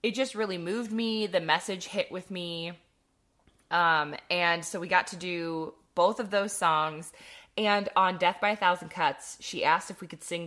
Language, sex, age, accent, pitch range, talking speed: English, female, 20-39, American, 175-240 Hz, 195 wpm